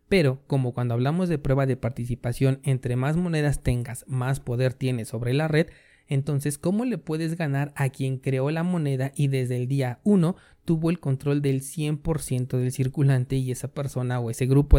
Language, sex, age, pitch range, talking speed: Spanish, male, 30-49, 125-150 Hz, 185 wpm